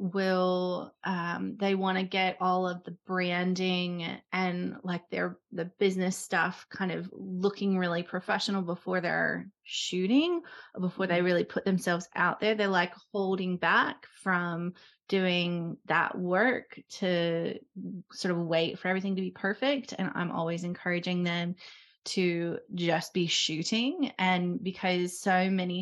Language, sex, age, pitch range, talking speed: English, female, 20-39, 175-195 Hz, 140 wpm